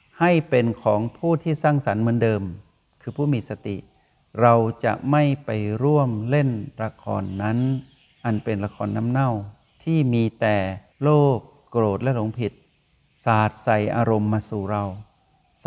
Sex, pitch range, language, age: male, 105-130 Hz, Thai, 60-79